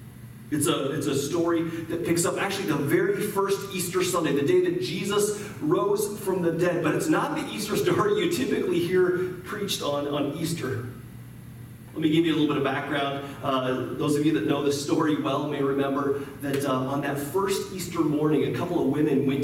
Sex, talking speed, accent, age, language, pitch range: male, 205 wpm, American, 30-49, English, 130-170 Hz